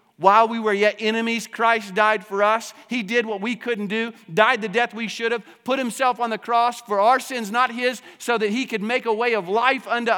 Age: 50-69